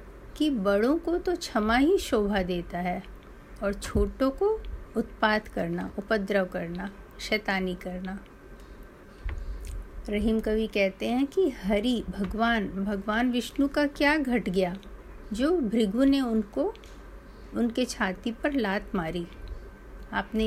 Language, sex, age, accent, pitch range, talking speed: Hindi, female, 50-69, native, 200-250 Hz, 120 wpm